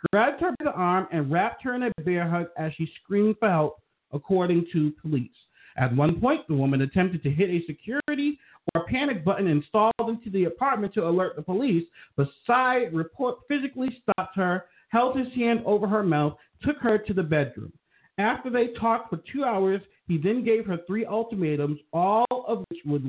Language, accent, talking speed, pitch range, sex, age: English, American, 195 wpm, 160-225 Hz, male, 50-69